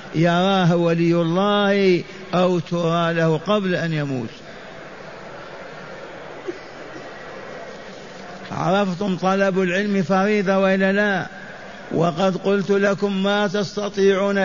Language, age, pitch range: Arabic, 50-69, 185-205 Hz